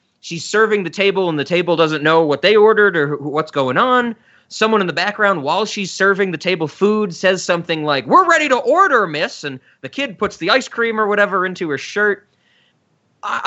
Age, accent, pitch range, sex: 30-49, American, 145-210 Hz, male